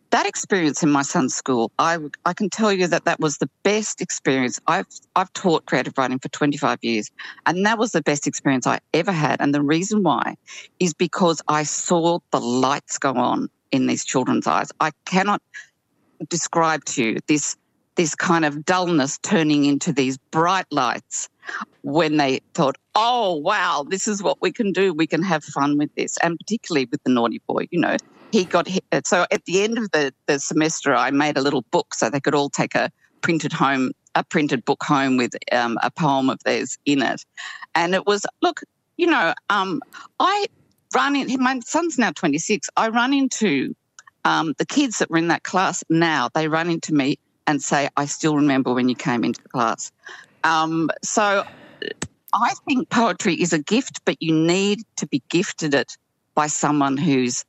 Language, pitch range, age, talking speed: English, 145-195 Hz, 50-69, 195 wpm